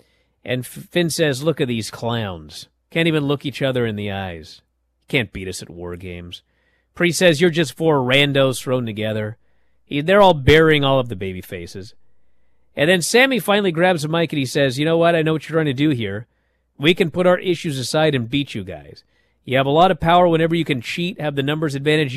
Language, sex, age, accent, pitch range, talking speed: English, male, 40-59, American, 115-170 Hz, 220 wpm